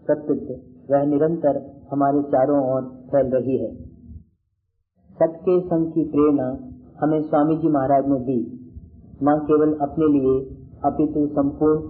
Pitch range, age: 130-155 Hz, 40-59